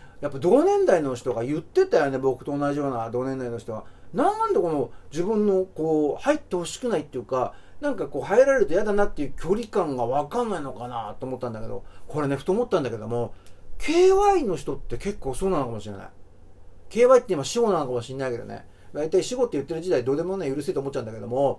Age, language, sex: 40-59, Japanese, male